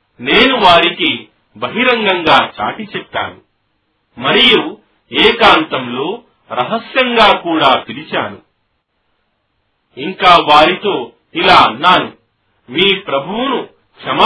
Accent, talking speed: native, 45 wpm